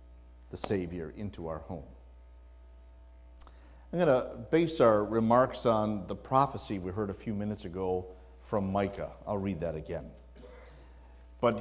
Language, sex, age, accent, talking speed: English, male, 50-69, American, 140 wpm